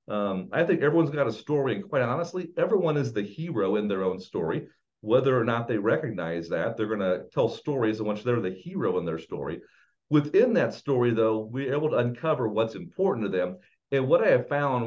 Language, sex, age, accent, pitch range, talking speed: English, male, 50-69, American, 110-145 Hz, 215 wpm